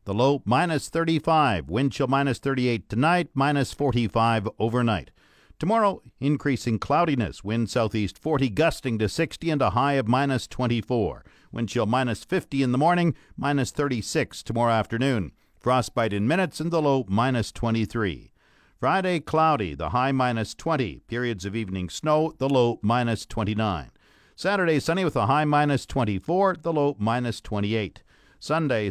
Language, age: English, 50-69